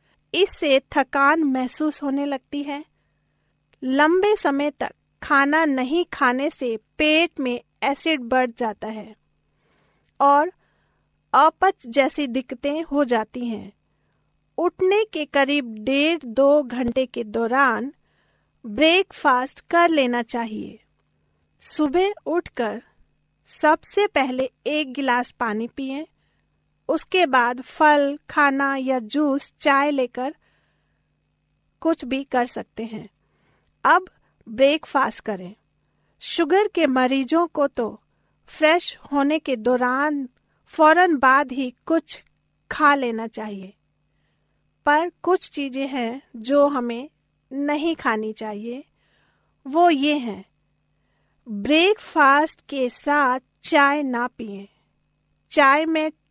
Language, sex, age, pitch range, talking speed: Hindi, female, 40-59, 250-310 Hz, 105 wpm